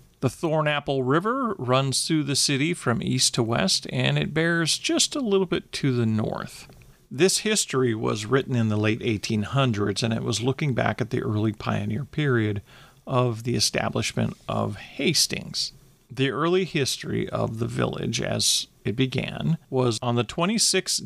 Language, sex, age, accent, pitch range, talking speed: English, male, 40-59, American, 125-180 Hz, 160 wpm